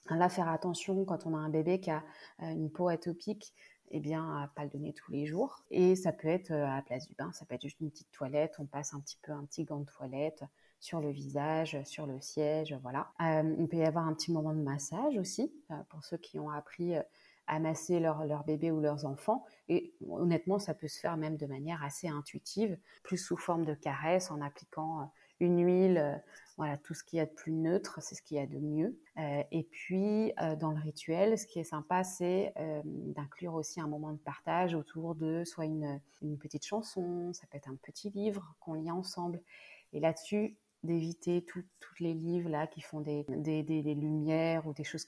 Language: French